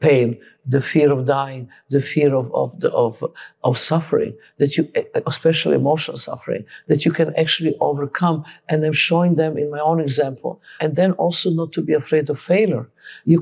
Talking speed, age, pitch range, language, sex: 170 wpm, 50-69, 150-185 Hz, English, male